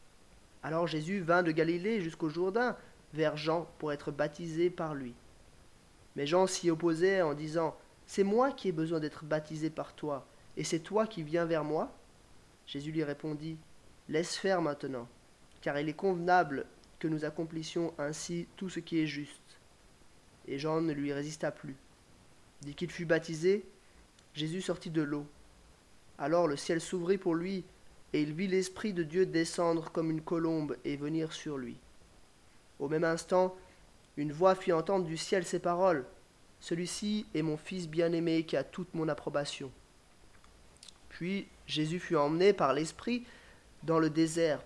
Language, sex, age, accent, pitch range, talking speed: French, male, 20-39, French, 150-180 Hz, 160 wpm